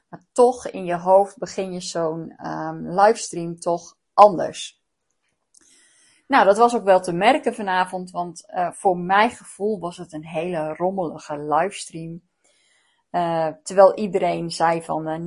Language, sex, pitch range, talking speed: Dutch, female, 165-205 Hz, 145 wpm